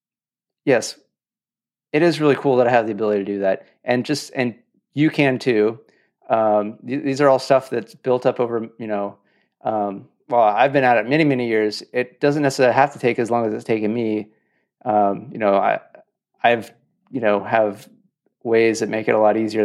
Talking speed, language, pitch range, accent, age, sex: 210 wpm, English, 105-130 Hz, American, 30-49, male